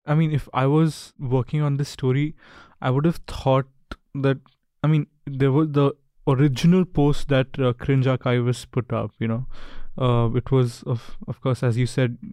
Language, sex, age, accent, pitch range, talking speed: English, male, 20-39, Indian, 125-155 Hz, 185 wpm